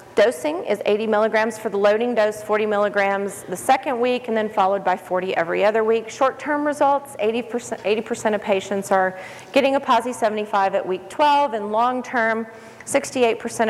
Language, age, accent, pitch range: English, 40-59, American, 190-240 Hz